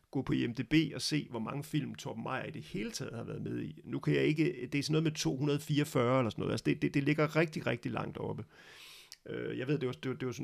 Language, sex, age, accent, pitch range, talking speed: Danish, male, 40-59, native, 120-150 Hz, 280 wpm